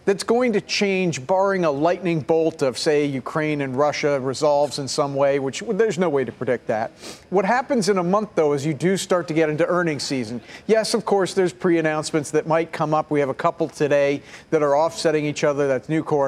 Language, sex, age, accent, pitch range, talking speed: English, male, 50-69, American, 150-205 Hz, 220 wpm